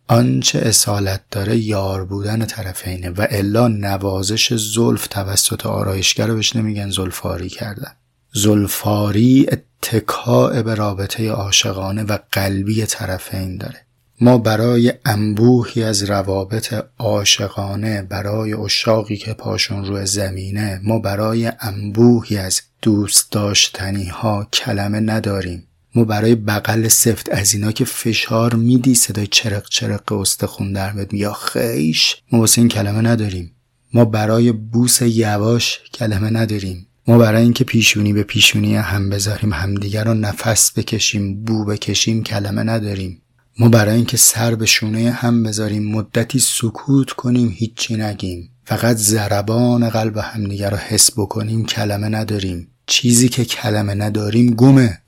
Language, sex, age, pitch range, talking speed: English, male, 30-49, 100-115 Hz, 125 wpm